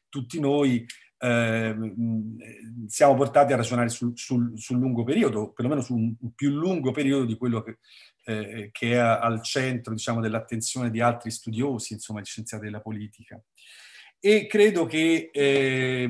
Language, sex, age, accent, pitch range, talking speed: Italian, male, 40-59, native, 115-140 Hz, 150 wpm